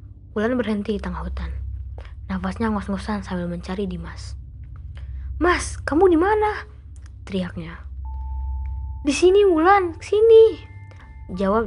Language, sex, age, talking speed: Malay, female, 20-39, 110 wpm